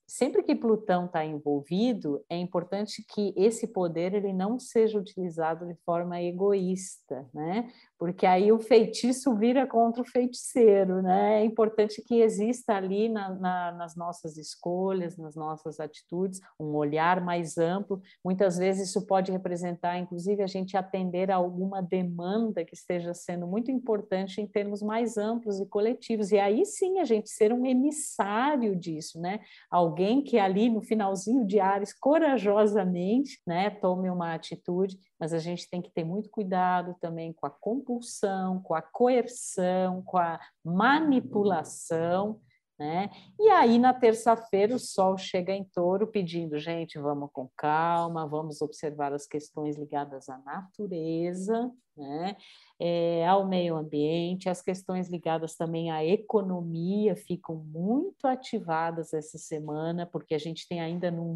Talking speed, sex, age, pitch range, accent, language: 150 wpm, female, 50-69, 170-215 Hz, Brazilian, Portuguese